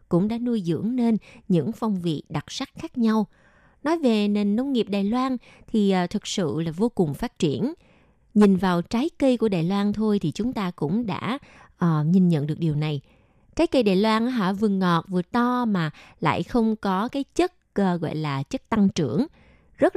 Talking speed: 205 wpm